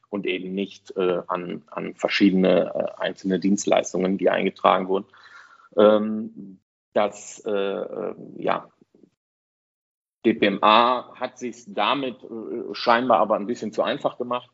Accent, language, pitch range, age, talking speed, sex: German, German, 95-110 Hz, 40-59, 125 wpm, male